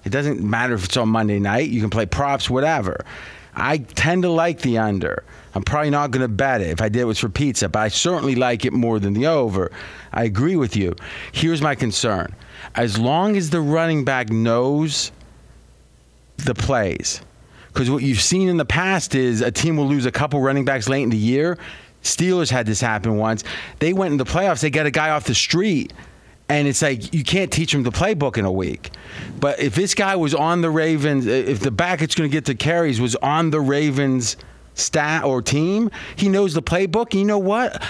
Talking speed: 220 wpm